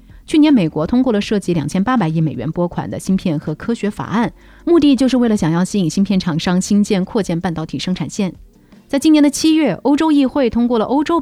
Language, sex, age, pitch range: Chinese, female, 30-49, 165-235 Hz